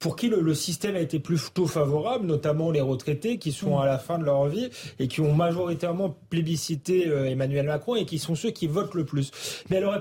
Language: French